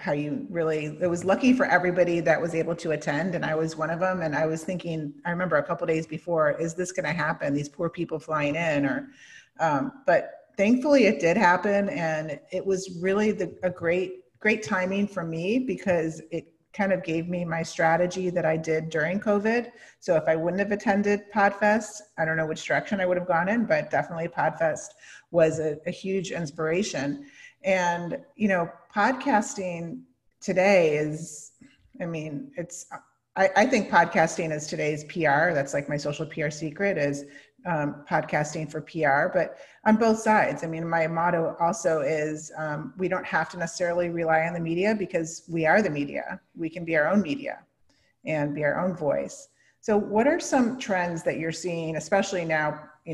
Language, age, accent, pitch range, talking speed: English, 40-59, American, 155-195 Hz, 190 wpm